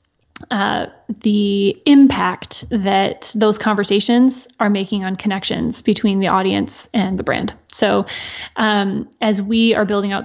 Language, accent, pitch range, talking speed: English, American, 195-225 Hz, 135 wpm